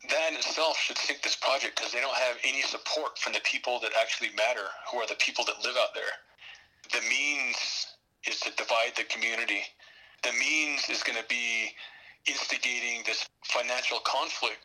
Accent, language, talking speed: American, English, 180 wpm